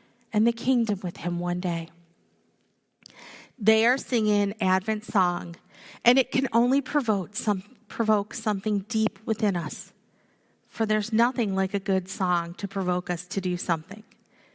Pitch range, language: 185-235 Hz, English